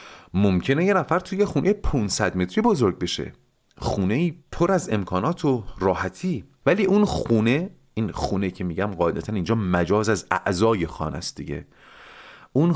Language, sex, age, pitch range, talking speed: Persian, male, 40-59, 95-140 Hz, 145 wpm